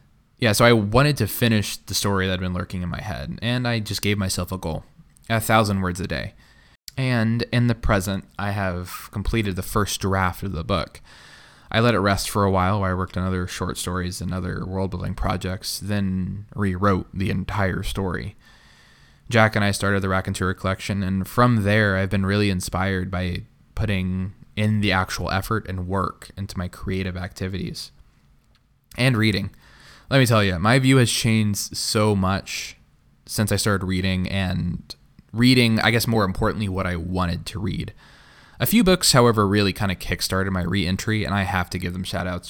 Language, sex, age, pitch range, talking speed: English, male, 20-39, 95-110 Hz, 190 wpm